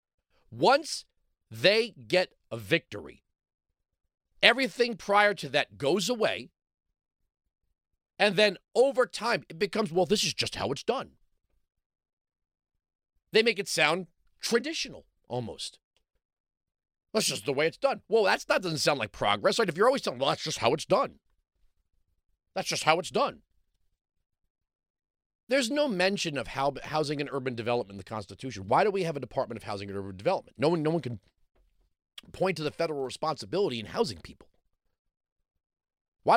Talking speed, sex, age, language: 150 wpm, male, 40-59, English